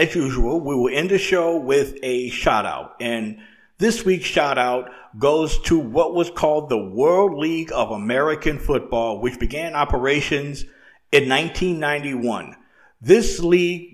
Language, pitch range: English, 130-170 Hz